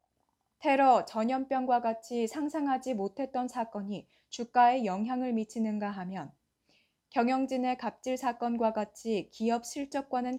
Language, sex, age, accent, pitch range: Korean, female, 20-39, native, 210-255 Hz